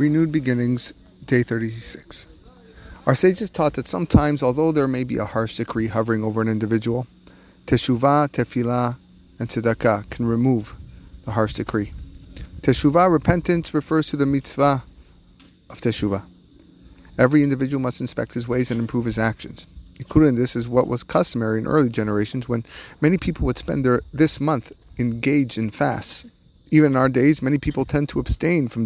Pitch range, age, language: 110-145 Hz, 30-49, English